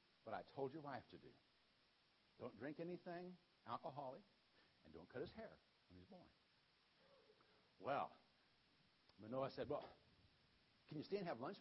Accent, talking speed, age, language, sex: American, 150 wpm, 60-79, English, male